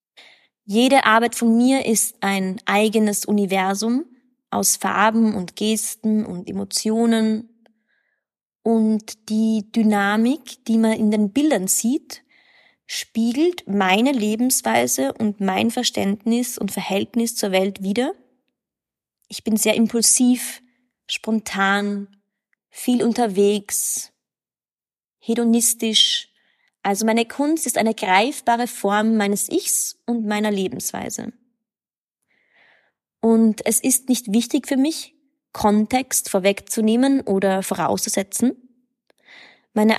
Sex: female